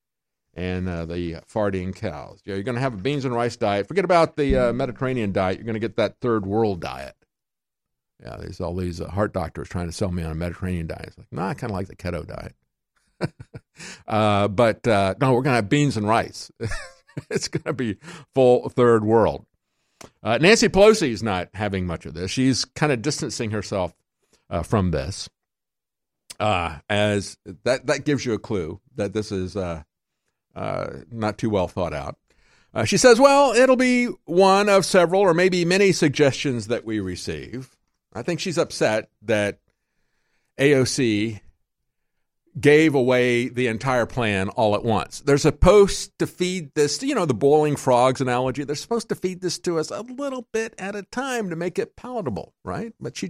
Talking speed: 190 wpm